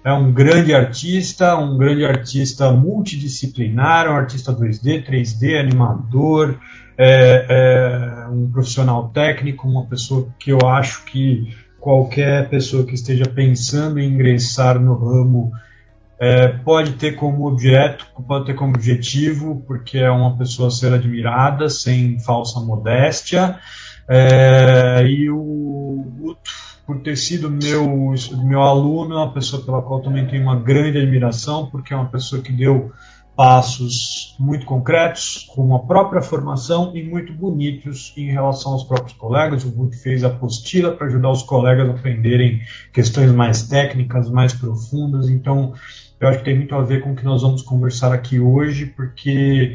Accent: Brazilian